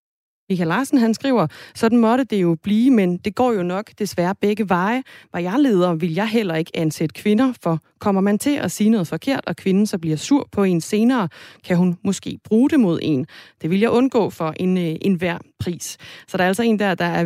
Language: Danish